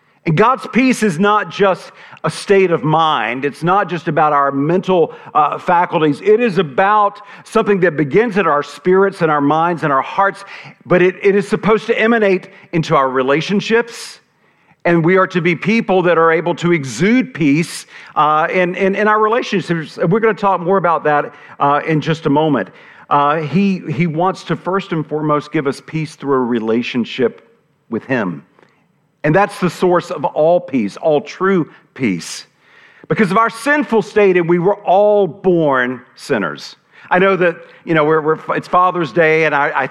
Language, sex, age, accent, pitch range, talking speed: English, male, 50-69, American, 145-195 Hz, 185 wpm